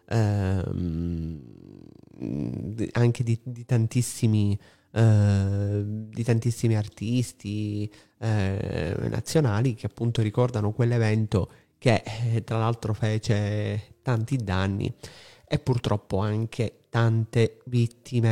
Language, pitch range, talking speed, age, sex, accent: Italian, 105-130 Hz, 85 wpm, 30-49, male, native